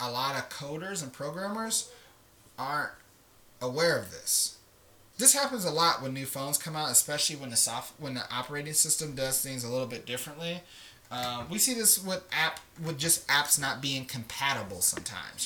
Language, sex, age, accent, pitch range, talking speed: English, male, 20-39, American, 110-155 Hz, 180 wpm